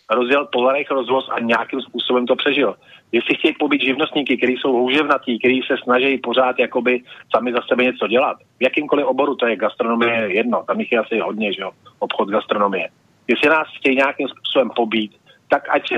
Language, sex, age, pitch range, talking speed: Slovak, male, 40-59, 125-145 Hz, 185 wpm